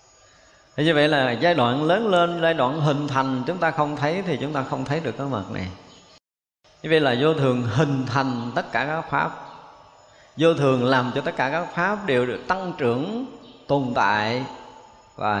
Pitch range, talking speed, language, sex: 110-150 Hz, 185 wpm, Vietnamese, male